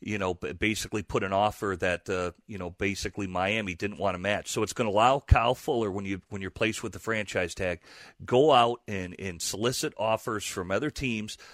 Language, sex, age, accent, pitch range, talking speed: English, male, 40-59, American, 100-125 Hz, 215 wpm